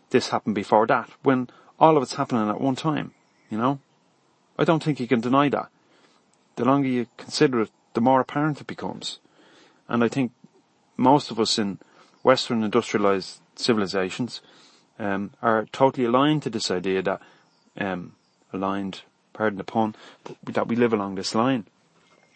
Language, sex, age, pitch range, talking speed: English, male, 30-49, 100-135 Hz, 160 wpm